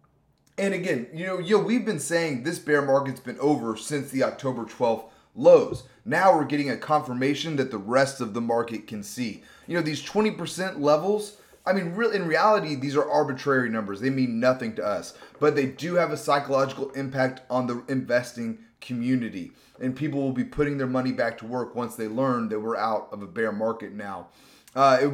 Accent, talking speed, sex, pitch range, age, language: American, 195 wpm, male, 125-155 Hz, 30-49, English